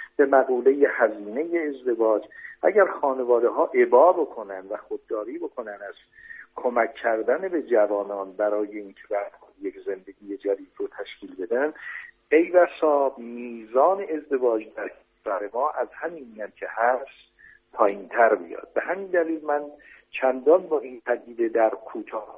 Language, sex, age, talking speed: Persian, male, 50-69, 130 wpm